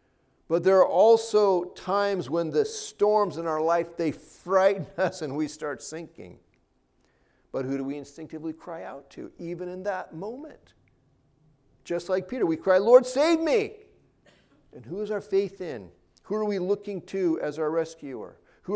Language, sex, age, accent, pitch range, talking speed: English, male, 50-69, American, 130-210 Hz, 170 wpm